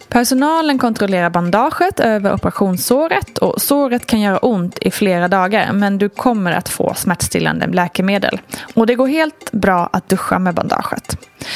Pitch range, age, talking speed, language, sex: 185-255 Hz, 20-39, 145 wpm, Swedish, female